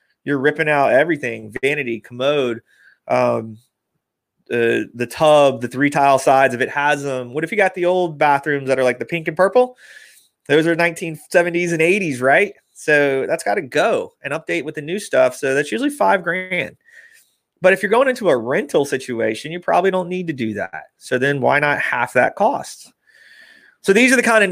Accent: American